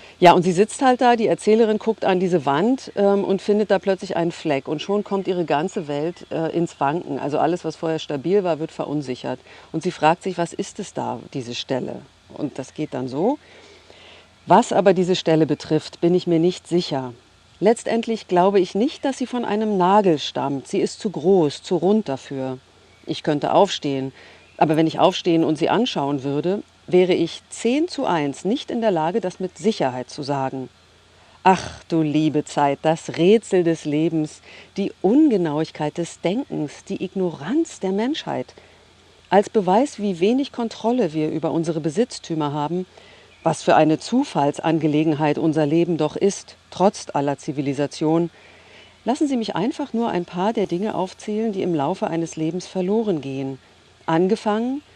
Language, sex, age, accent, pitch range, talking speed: German, female, 50-69, German, 150-205 Hz, 175 wpm